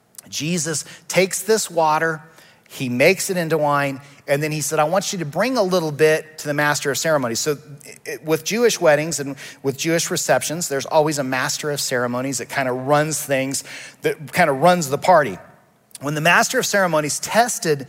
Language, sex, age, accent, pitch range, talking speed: English, male, 40-59, American, 135-175 Hz, 190 wpm